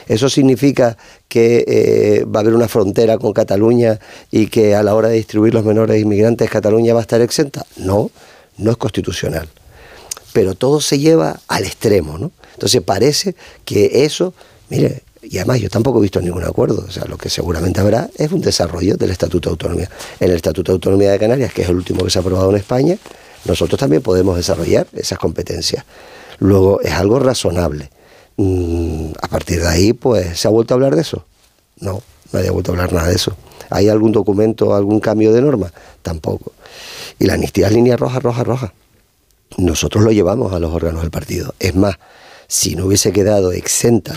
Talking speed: 195 wpm